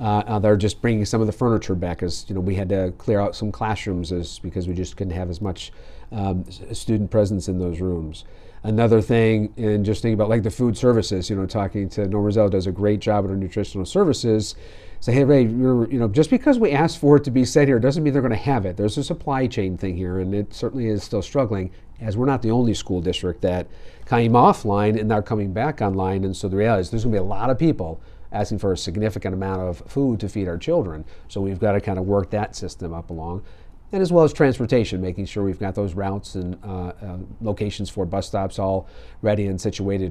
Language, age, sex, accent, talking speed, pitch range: English, 50-69, male, American, 240 wpm, 95-115 Hz